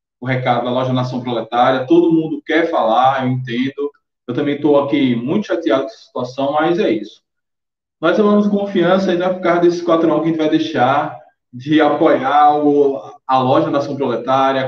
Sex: male